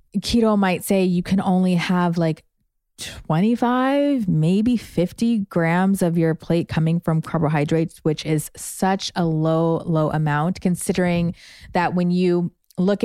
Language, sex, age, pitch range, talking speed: English, female, 20-39, 165-200 Hz, 140 wpm